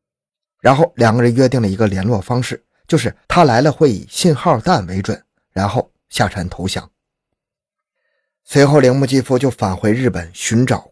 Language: Chinese